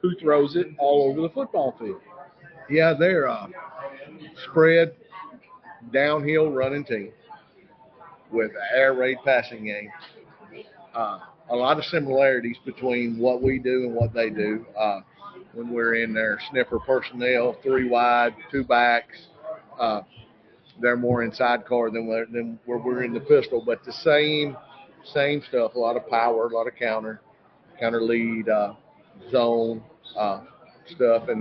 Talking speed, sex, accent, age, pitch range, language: 145 wpm, male, American, 50-69, 120-145 Hz, English